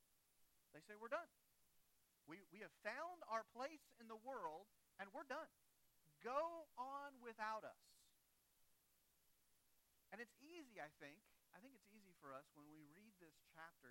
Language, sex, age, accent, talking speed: English, male, 40-59, American, 155 wpm